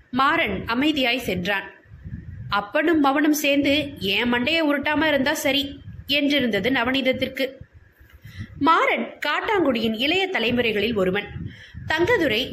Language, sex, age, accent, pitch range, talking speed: Tamil, female, 20-39, native, 225-310 Hz, 90 wpm